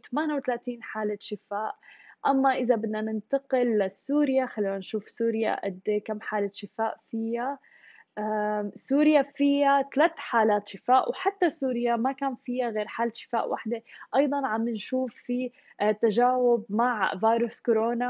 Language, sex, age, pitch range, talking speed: Arabic, female, 10-29, 225-275 Hz, 125 wpm